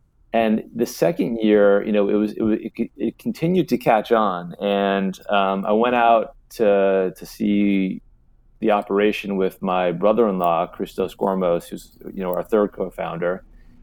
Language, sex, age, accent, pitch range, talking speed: English, male, 30-49, American, 90-105 Hz, 155 wpm